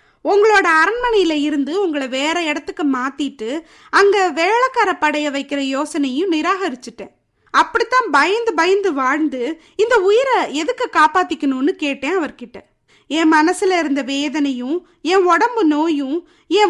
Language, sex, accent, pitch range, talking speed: Tamil, female, native, 285-380 Hz, 110 wpm